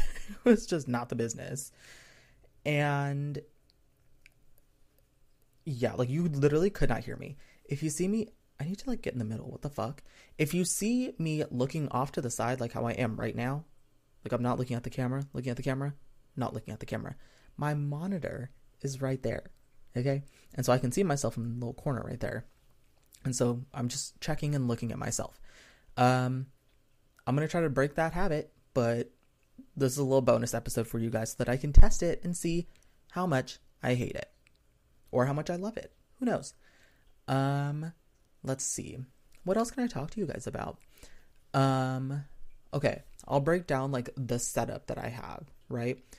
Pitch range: 120-145 Hz